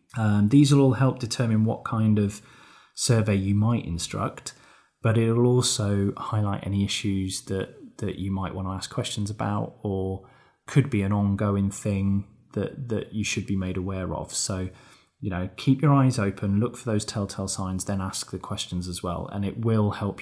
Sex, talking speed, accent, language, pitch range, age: male, 190 wpm, British, English, 100-120 Hz, 20-39